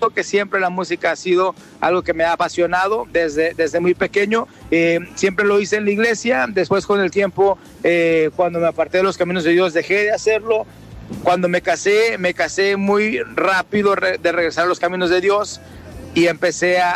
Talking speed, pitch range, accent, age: 195 wpm, 170-200 Hz, Mexican, 40-59